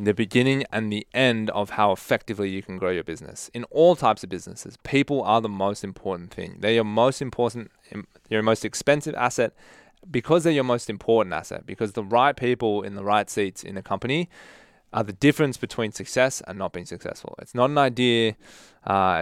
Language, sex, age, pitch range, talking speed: English, male, 20-39, 105-125 Hz, 195 wpm